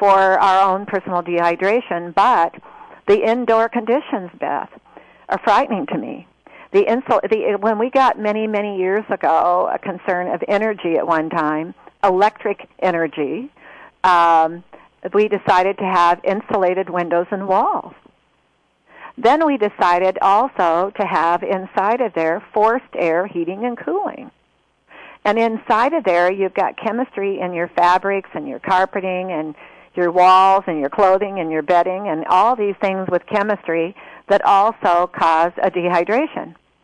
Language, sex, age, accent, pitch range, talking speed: English, female, 50-69, American, 180-220 Hz, 145 wpm